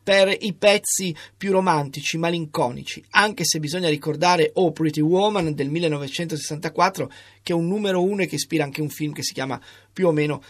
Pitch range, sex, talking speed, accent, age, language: 155-195 Hz, male, 185 wpm, native, 30-49, Italian